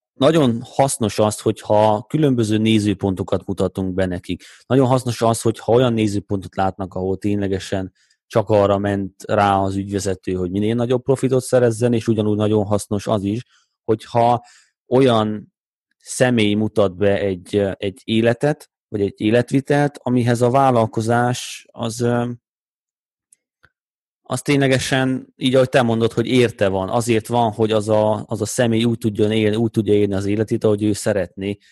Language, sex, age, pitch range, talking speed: Hungarian, male, 30-49, 100-120 Hz, 150 wpm